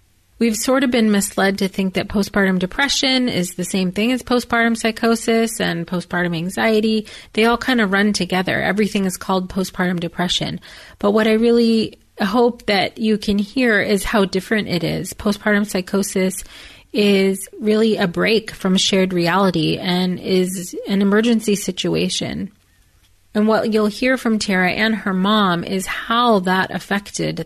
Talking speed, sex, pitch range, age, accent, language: 155 wpm, female, 185-225 Hz, 30-49, American, English